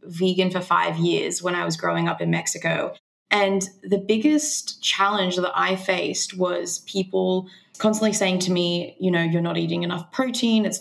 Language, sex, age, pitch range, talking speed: English, female, 20-39, 180-205 Hz, 180 wpm